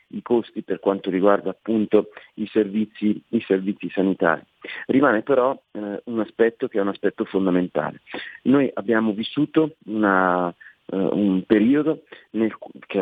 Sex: male